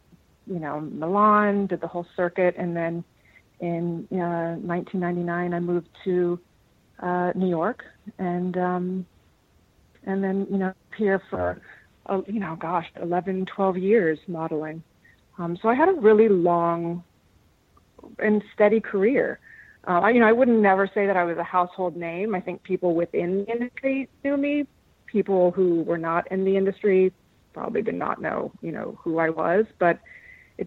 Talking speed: 160 wpm